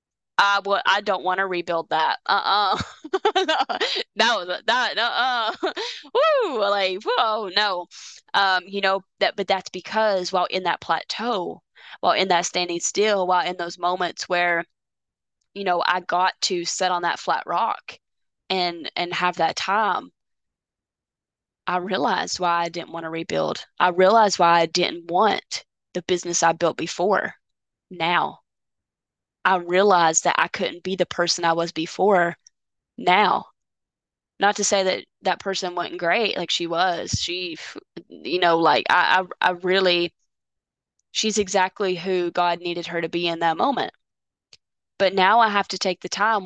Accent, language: American, English